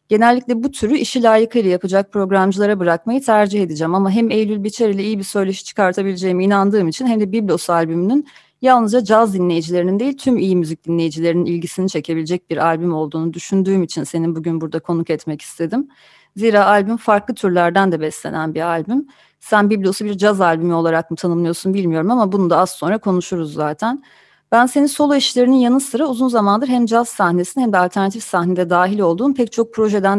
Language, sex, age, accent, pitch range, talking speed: Turkish, female, 30-49, native, 170-215 Hz, 180 wpm